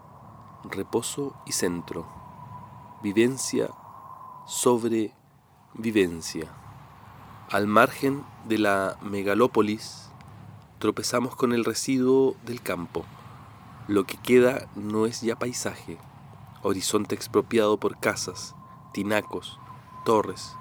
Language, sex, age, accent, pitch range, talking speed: Spanish, male, 40-59, Argentinian, 105-130 Hz, 85 wpm